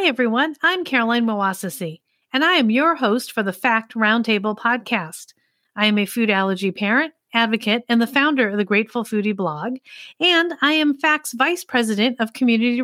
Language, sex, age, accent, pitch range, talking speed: English, female, 40-59, American, 185-250 Hz, 180 wpm